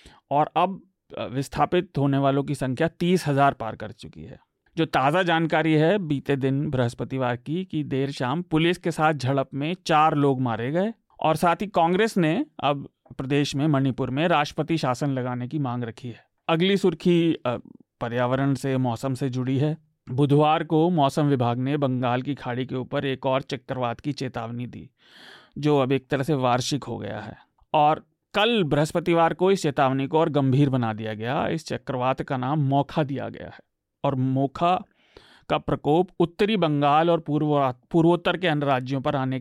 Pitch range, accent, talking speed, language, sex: 130-165 Hz, native, 165 wpm, Hindi, male